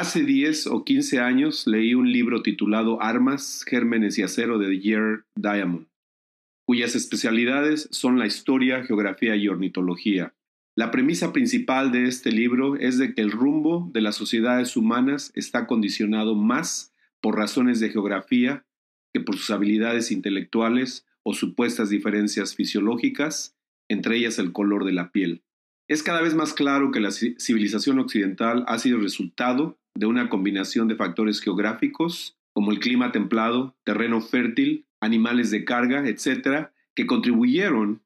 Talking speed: 145 wpm